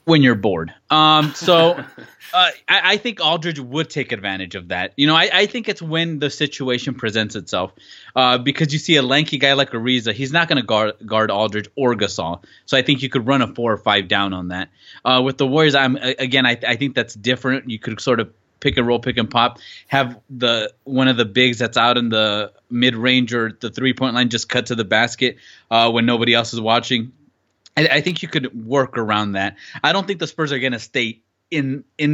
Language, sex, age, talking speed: English, male, 20-39, 230 wpm